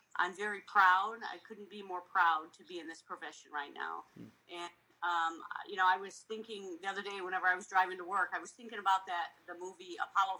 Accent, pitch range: American, 175-210 Hz